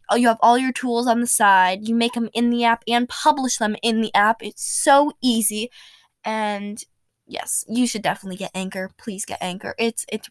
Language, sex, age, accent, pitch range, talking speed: English, female, 10-29, American, 215-265 Hz, 210 wpm